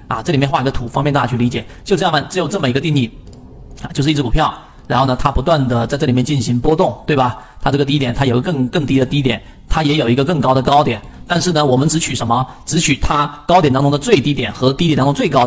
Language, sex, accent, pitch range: Chinese, male, native, 130-175 Hz